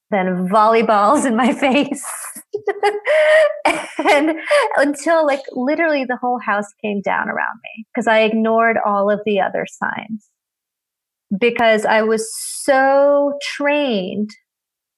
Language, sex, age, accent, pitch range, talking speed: English, female, 30-49, American, 210-285 Hz, 115 wpm